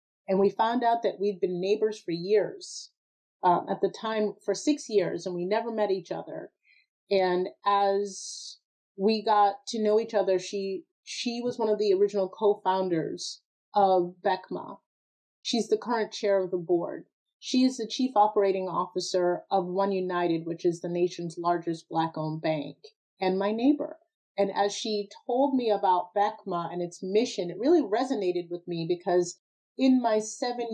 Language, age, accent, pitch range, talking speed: English, 30-49, American, 180-220 Hz, 170 wpm